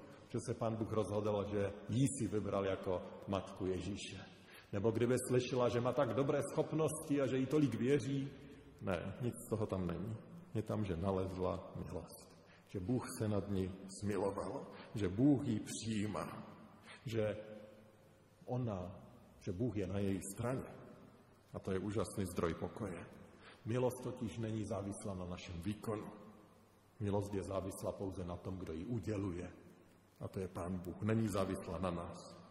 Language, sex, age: Slovak, male, 50-69